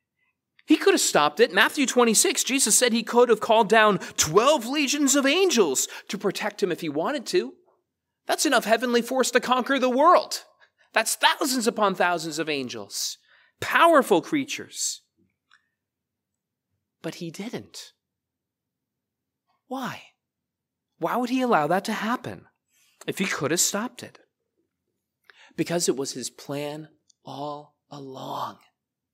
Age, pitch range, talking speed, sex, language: 30-49, 195-245 Hz, 135 wpm, male, English